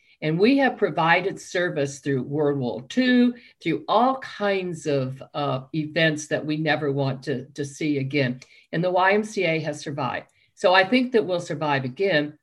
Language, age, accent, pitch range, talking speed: English, 50-69, American, 140-180 Hz, 170 wpm